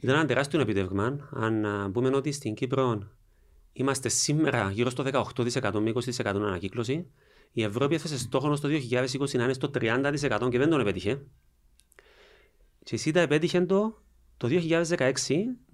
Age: 30-49